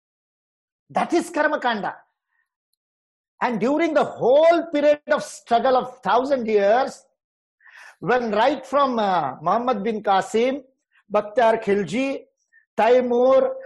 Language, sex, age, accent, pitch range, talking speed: English, male, 50-69, Indian, 230-295 Hz, 100 wpm